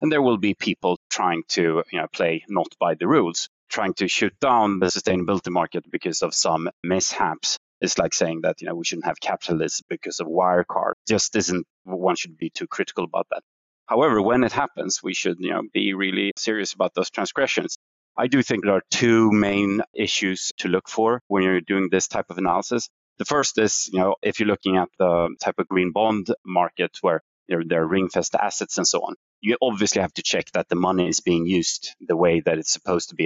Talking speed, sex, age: 215 wpm, male, 30-49